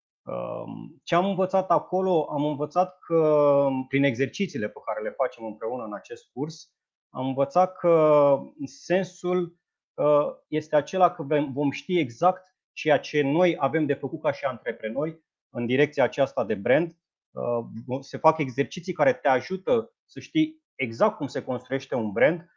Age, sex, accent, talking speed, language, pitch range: 30-49, male, native, 150 wpm, Romanian, 125-170 Hz